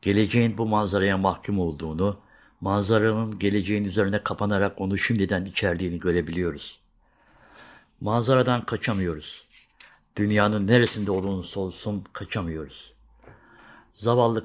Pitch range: 90-105 Hz